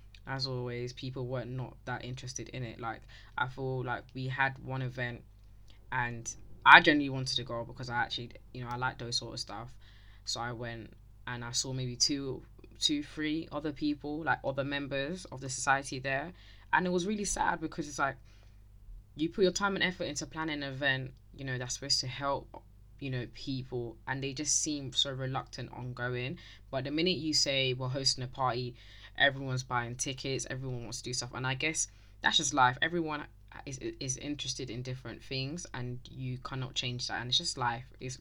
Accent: British